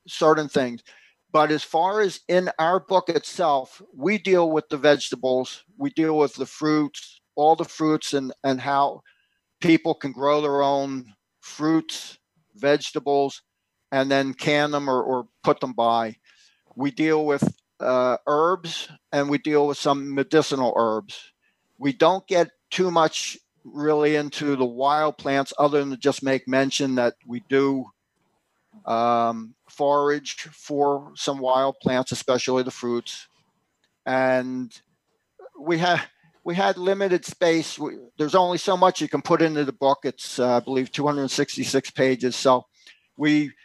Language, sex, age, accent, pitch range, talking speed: English, male, 50-69, American, 130-155 Hz, 150 wpm